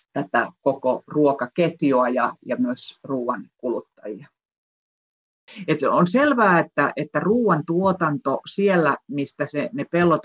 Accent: native